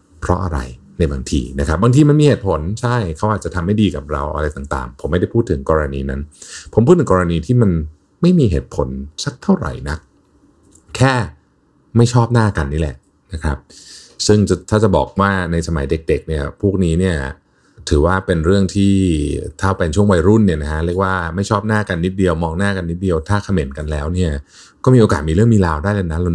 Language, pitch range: Thai, 75-100 Hz